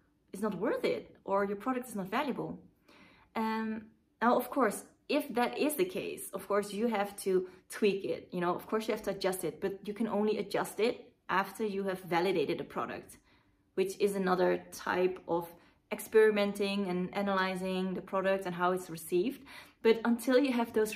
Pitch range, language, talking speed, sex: 185-225 Hz, English, 190 wpm, female